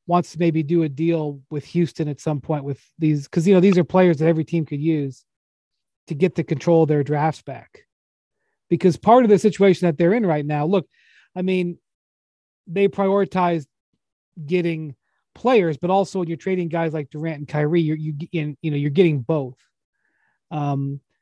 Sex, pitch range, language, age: male, 155-185 Hz, English, 30-49